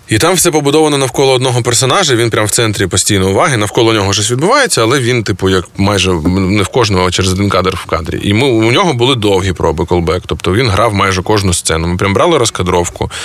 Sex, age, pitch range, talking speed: male, 20-39, 95-115 Hz, 220 wpm